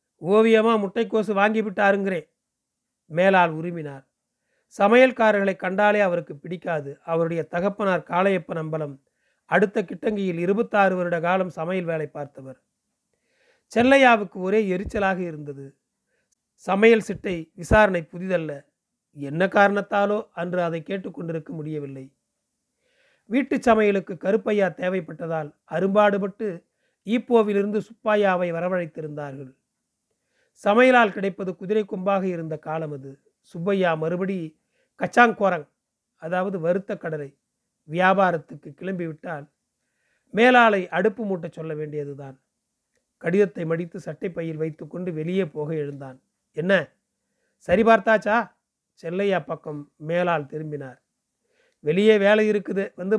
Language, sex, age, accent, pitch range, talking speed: Tamil, male, 40-59, native, 160-210 Hz, 95 wpm